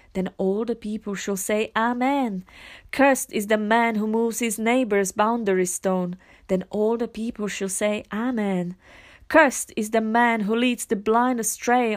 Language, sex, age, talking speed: English, female, 30-49, 165 wpm